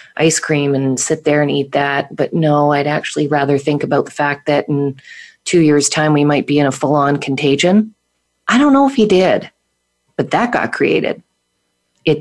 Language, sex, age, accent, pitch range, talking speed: English, female, 40-59, American, 140-180 Hz, 195 wpm